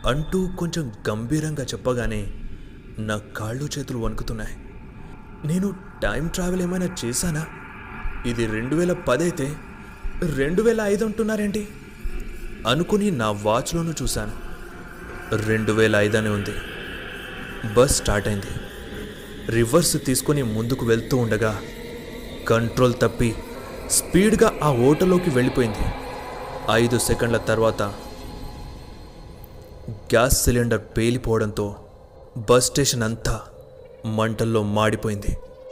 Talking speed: 90 wpm